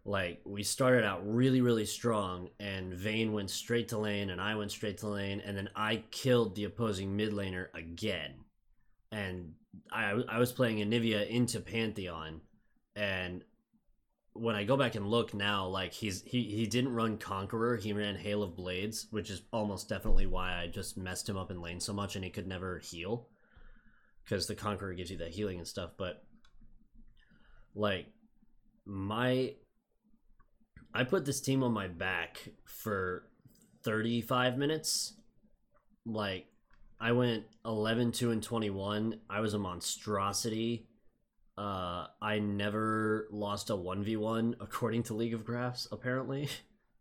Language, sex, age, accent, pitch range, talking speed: English, male, 20-39, American, 95-115 Hz, 150 wpm